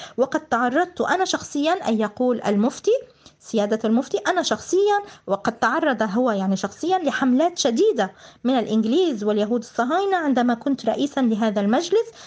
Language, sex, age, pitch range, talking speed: Arabic, female, 20-39, 215-305 Hz, 130 wpm